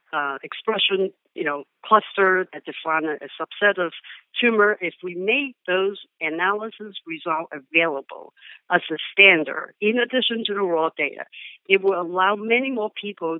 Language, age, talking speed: English, 60-79, 150 wpm